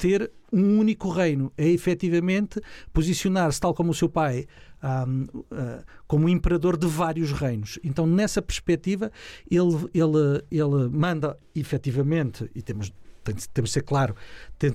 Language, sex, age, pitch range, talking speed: Portuguese, male, 50-69, 150-195 Hz, 135 wpm